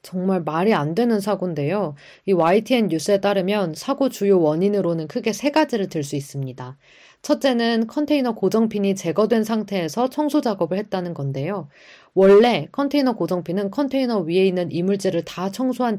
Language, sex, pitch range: Korean, female, 165-225 Hz